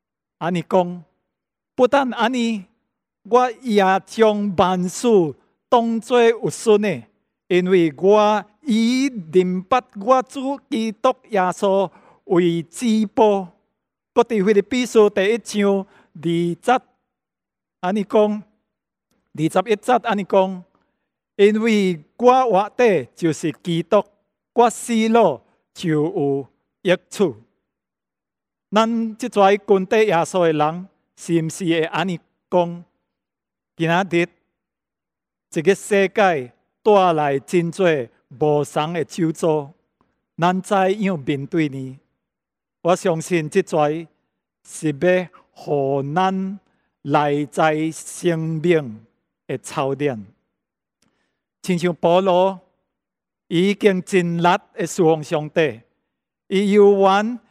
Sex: male